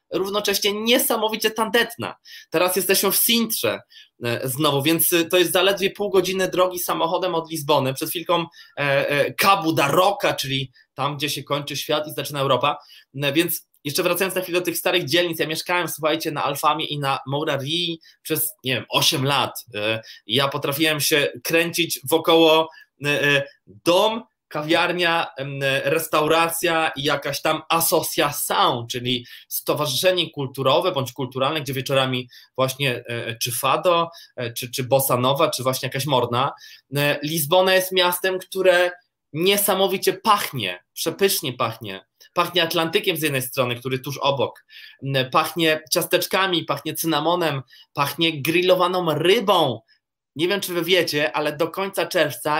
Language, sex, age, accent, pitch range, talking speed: Polish, male, 20-39, native, 140-180 Hz, 140 wpm